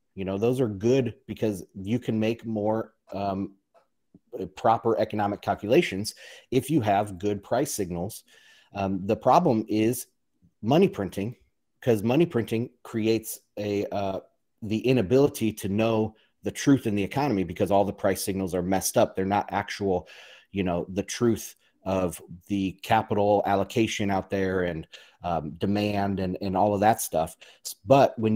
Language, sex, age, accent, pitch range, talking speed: English, male, 30-49, American, 95-115 Hz, 155 wpm